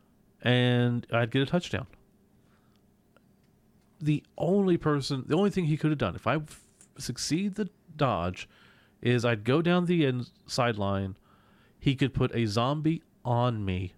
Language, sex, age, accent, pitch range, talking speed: English, male, 40-59, American, 100-125 Hz, 140 wpm